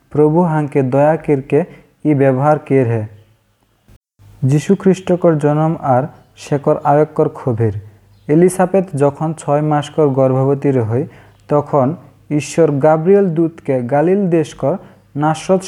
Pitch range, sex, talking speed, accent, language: 115-165 Hz, male, 105 wpm, Indian, English